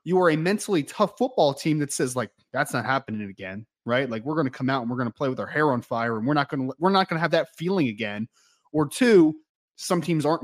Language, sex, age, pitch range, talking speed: English, male, 20-39, 130-170 Hz, 280 wpm